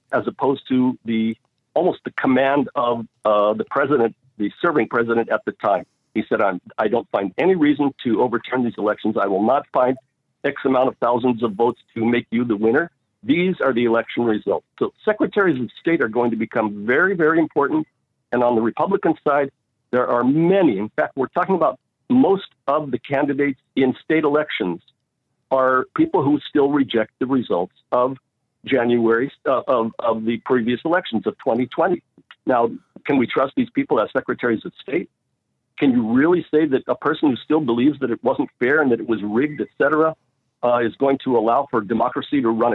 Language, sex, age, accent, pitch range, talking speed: English, male, 50-69, American, 115-155 Hz, 190 wpm